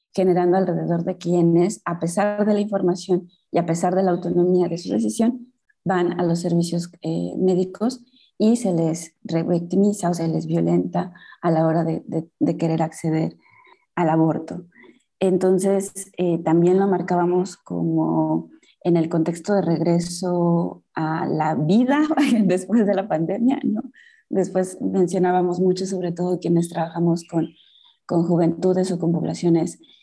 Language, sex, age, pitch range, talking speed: Spanish, female, 20-39, 165-190 Hz, 150 wpm